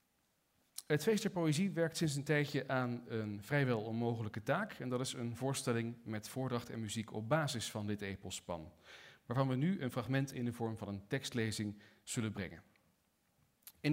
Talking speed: 175 wpm